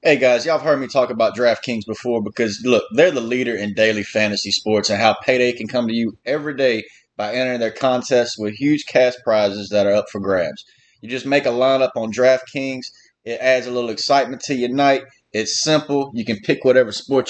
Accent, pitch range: American, 115-140 Hz